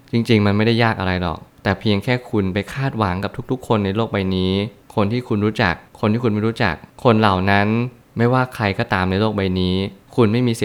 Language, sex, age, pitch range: Thai, male, 20-39, 95-115 Hz